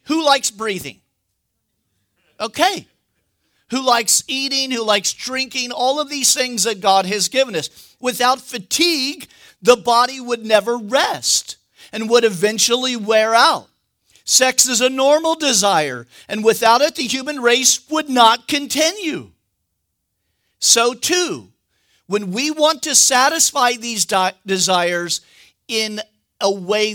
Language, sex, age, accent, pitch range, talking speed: English, male, 50-69, American, 185-255 Hz, 125 wpm